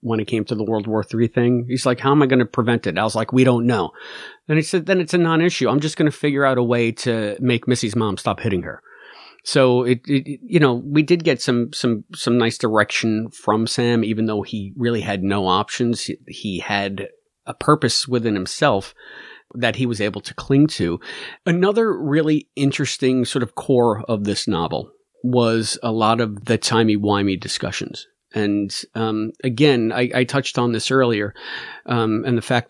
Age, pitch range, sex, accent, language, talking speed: 40-59, 110-140 Hz, male, American, English, 205 wpm